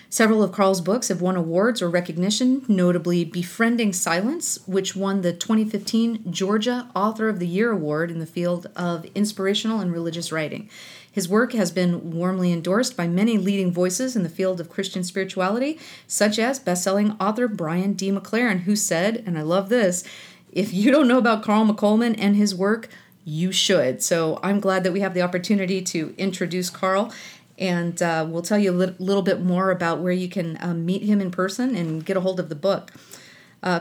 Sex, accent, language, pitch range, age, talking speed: female, American, English, 175-210 Hz, 40-59, 190 wpm